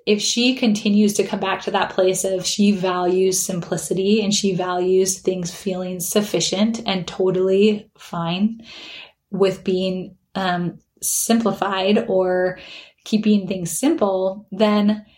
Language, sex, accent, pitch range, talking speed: English, female, American, 190-220 Hz, 125 wpm